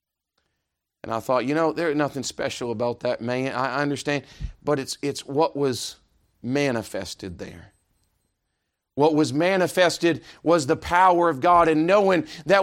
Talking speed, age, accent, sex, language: 145 wpm, 40-59, American, male, English